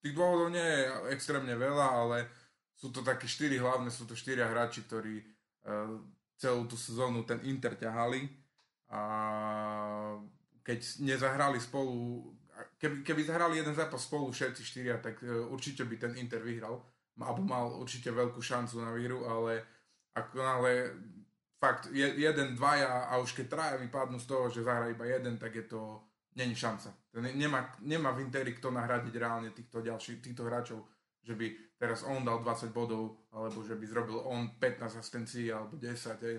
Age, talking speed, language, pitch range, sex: 20-39, 170 wpm, Slovak, 115-130 Hz, male